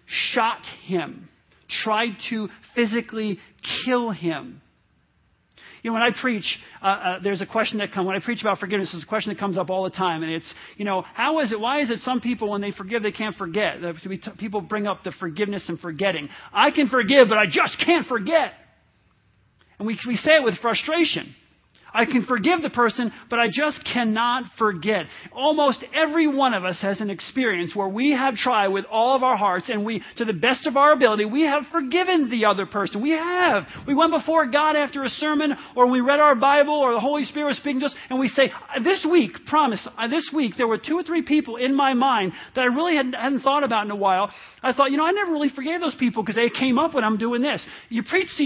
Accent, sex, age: American, male, 40-59